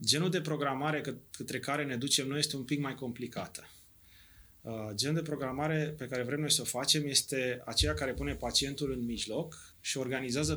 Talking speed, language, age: 180 wpm, Romanian, 20-39